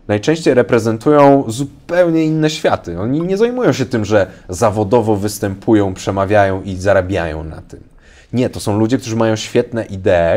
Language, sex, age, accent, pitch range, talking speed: Polish, male, 30-49, native, 90-115 Hz, 150 wpm